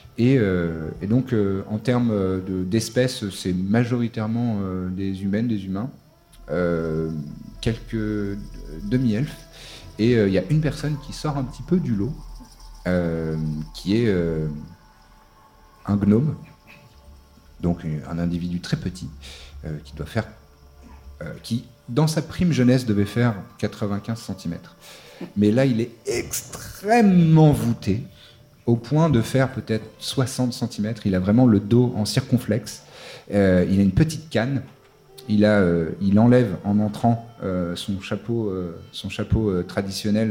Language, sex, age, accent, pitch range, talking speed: French, male, 40-59, French, 90-120 Hz, 140 wpm